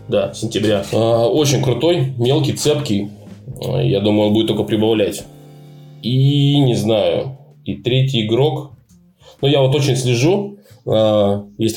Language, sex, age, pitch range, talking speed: Russian, male, 20-39, 100-125 Hz, 120 wpm